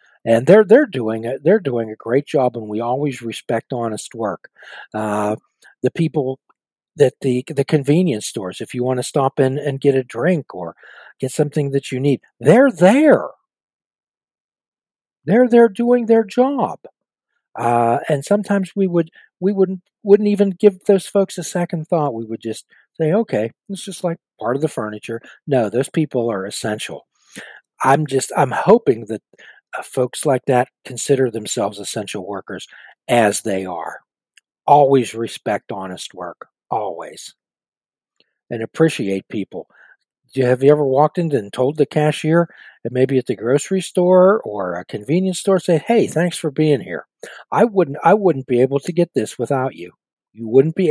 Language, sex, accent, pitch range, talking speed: English, male, American, 120-175 Hz, 170 wpm